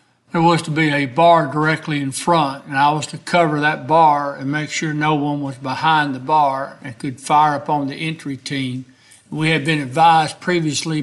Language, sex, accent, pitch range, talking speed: English, male, American, 135-160 Hz, 200 wpm